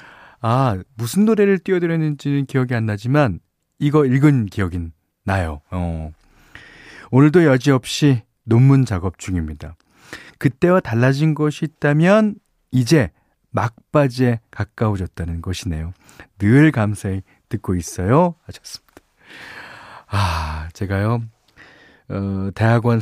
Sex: male